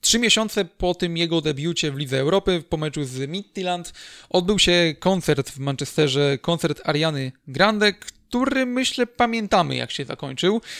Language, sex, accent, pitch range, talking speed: Polish, male, native, 145-185 Hz, 150 wpm